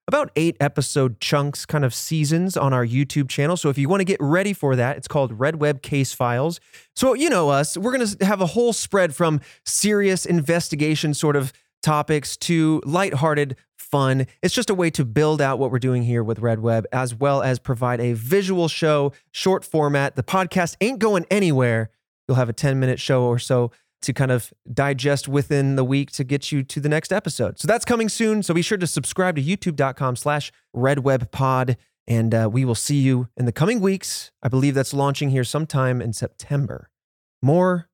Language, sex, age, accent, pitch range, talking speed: English, male, 30-49, American, 130-175 Hz, 200 wpm